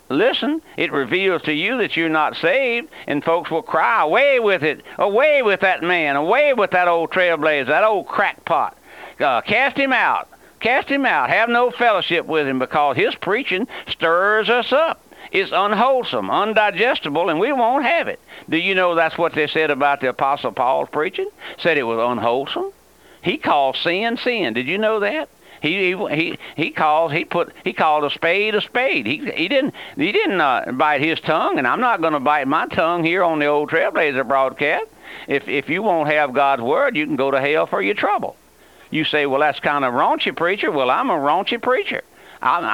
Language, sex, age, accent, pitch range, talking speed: English, male, 60-79, American, 150-240 Hz, 200 wpm